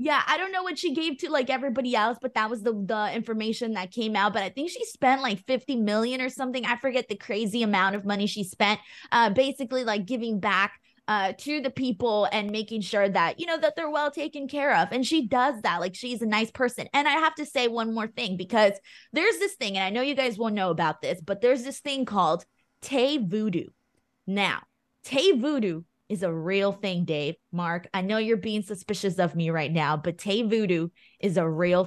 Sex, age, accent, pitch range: female, 20-39, American, 200-265 Hz